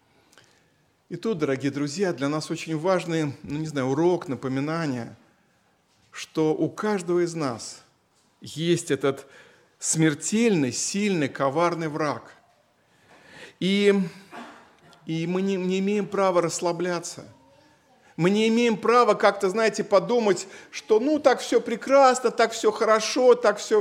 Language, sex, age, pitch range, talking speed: Russian, male, 50-69, 155-210 Hz, 125 wpm